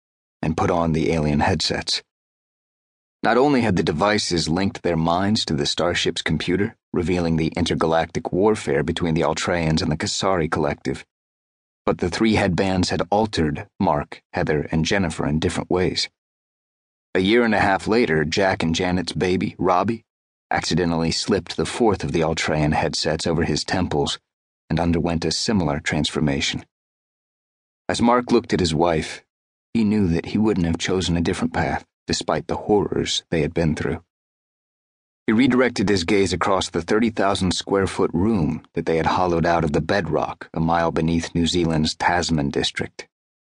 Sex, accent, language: male, American, English